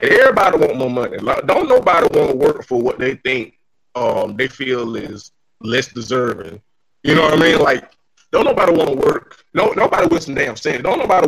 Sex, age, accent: male, 30-49, American